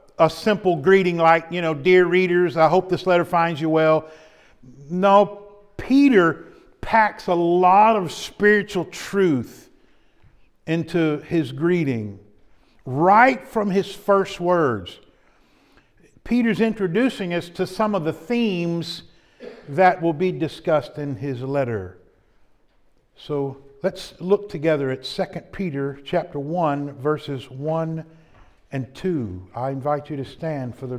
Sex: male